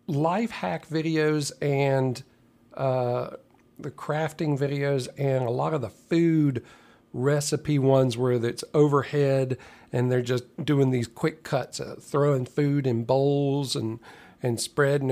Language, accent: English, American